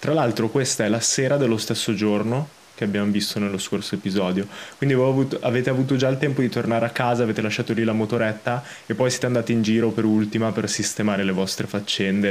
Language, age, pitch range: Italian, 20-39, 105-120 Hz